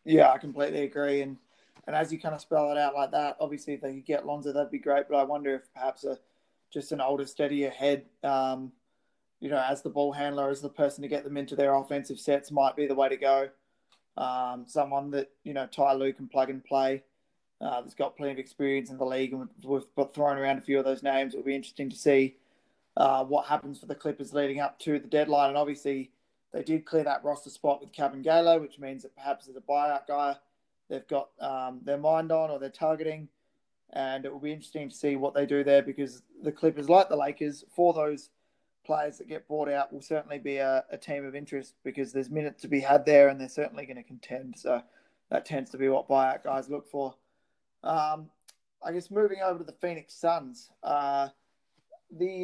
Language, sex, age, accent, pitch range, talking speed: English, male, 20-39, Australian, 135-150 Hz, 225 wpm